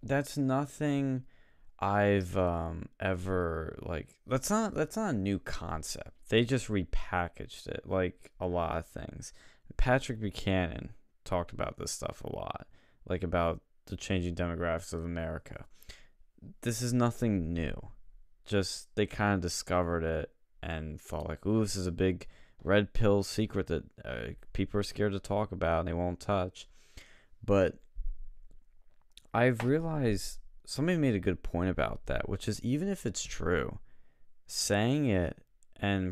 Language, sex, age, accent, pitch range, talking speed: English, male, 20-39, American, 85-110 Hz, 150 wpm